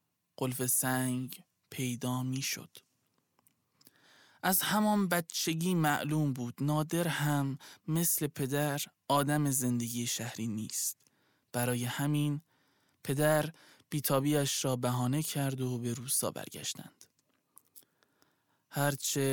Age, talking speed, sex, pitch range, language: 20-39, 90 wpm, male, 130-150 Hz, Persian